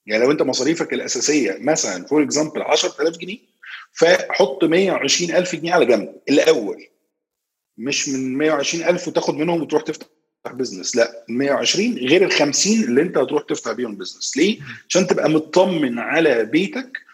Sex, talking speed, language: male, 145 wpm, Arabic